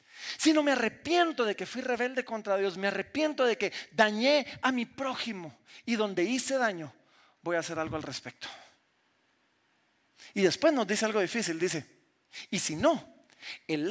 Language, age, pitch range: Spanish, 40-59, 220-340 Hz